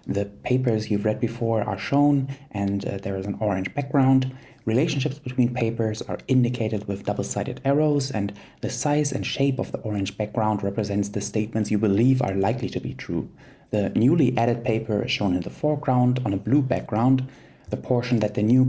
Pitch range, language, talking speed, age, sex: 105-135 Hz, English, 195 wpm, 20-39, male